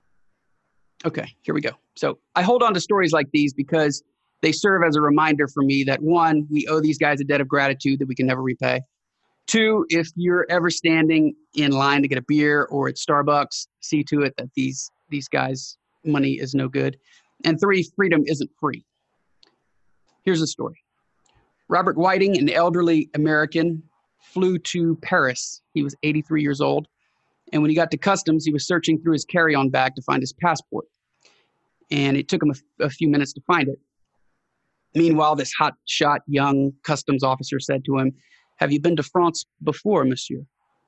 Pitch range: 140-165 Hz